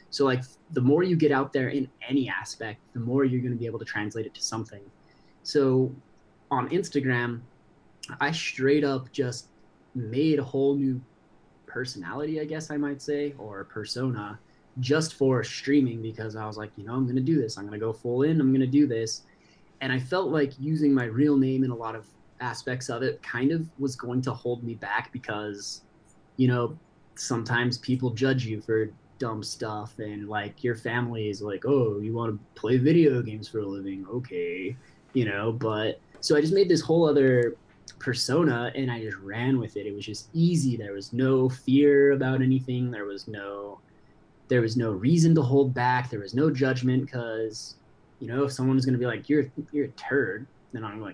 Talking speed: 205 wpm